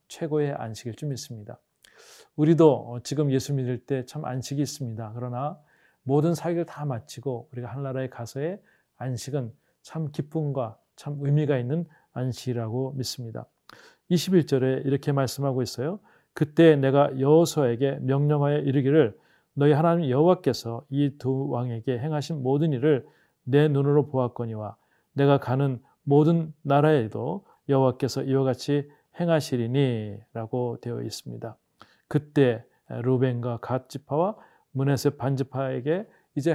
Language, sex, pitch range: Korean, male, 125-155 Hz